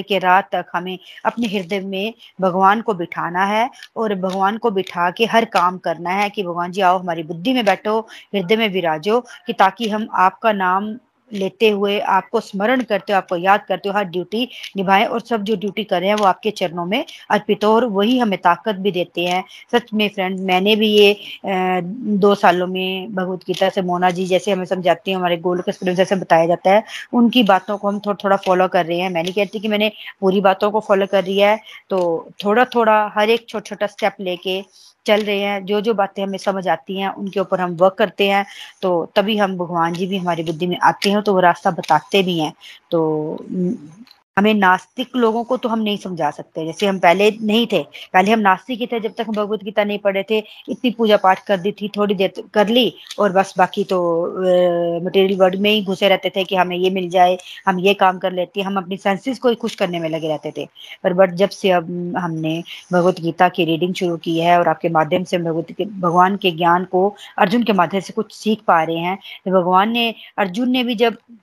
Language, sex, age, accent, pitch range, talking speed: Hindi, female, 20-39, native, 180-210 Hz, 215 wpm